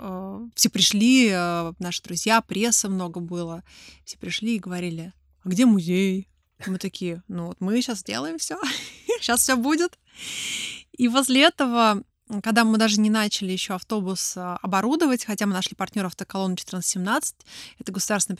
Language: Russian